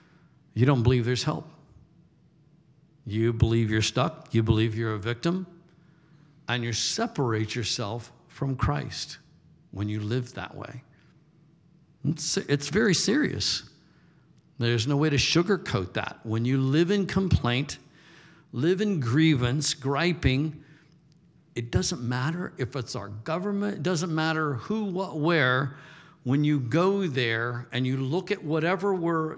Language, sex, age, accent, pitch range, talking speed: English, male, 60-79, American, 130-185 Hz, 135 wpm